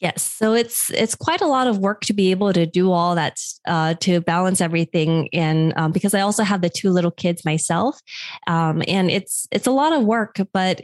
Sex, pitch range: female, 160-200 Hz